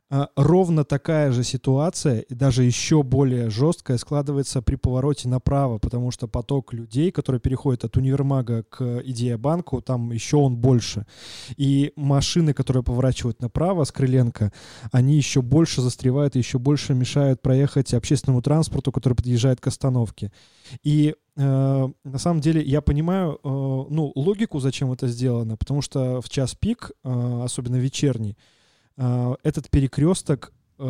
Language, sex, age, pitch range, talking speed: Russian, male, 20-39, 125-150 Hz, 140 wpm